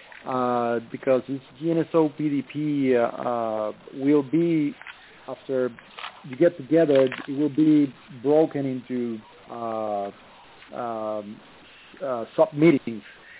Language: English